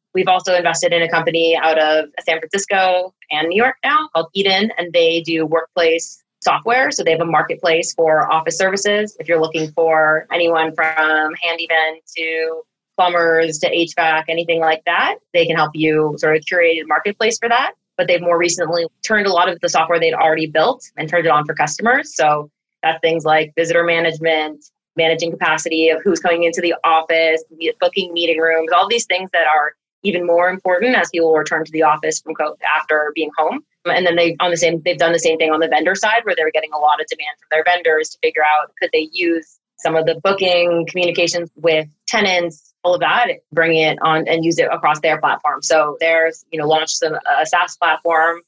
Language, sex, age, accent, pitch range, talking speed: English, female, 20-39, American, 160-175 Hz, 210 wpm